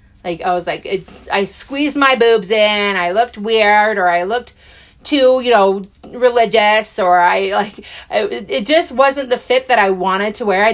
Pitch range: 180-275 Hz